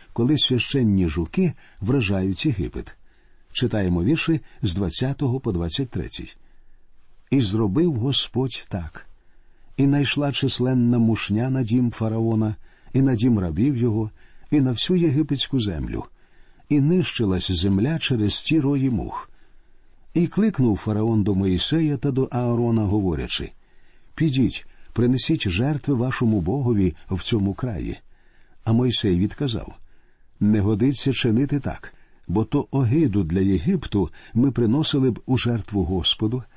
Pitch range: 105-135 Hz